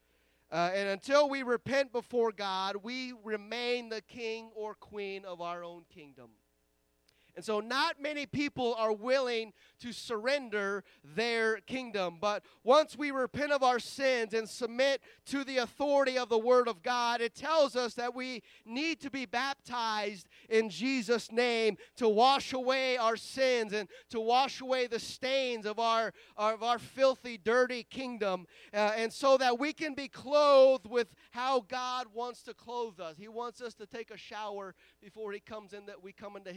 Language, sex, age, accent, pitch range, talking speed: English, male, 30-49, American, 205-245 Hz, 170 wpm